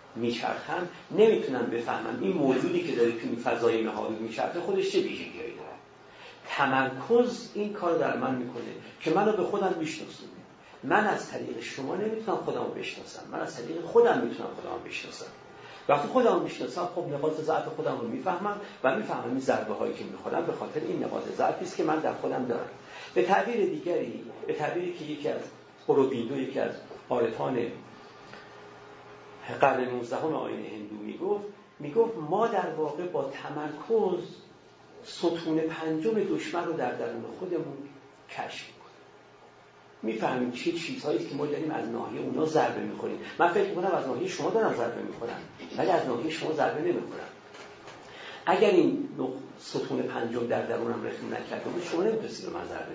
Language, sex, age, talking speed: Persian, male, 50-69, 165 wpm